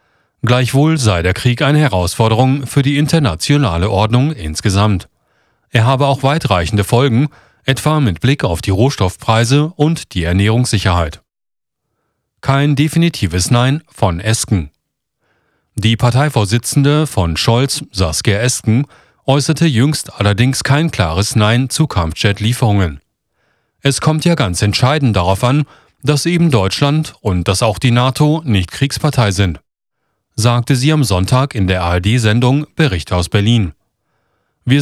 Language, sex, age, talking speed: German, male, 40-59, 125 wpm